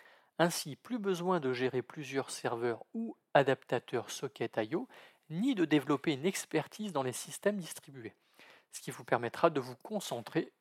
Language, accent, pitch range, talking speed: French, French, 130-180 Hz, 155 wpm